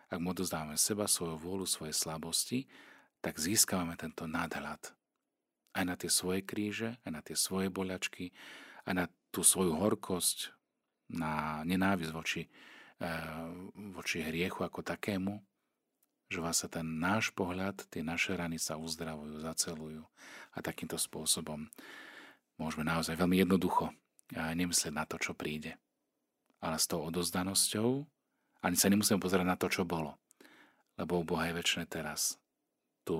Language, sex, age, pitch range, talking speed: Slovak, male, 40-59, 80-95 Hz, 135 wpm